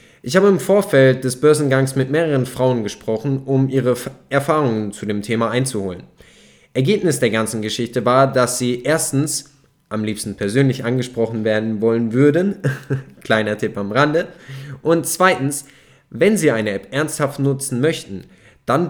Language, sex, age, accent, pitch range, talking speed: German, male, 10-29, German, 115-145 Hz, 145 wpm